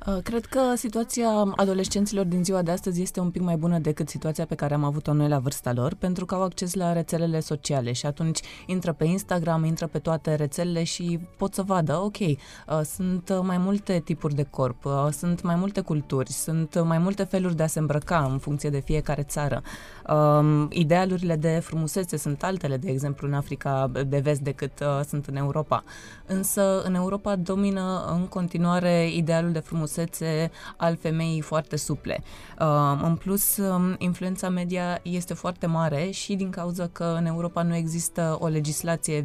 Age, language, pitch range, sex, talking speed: 20-39, Romanian, 150-180 Hz, female, 170 wpm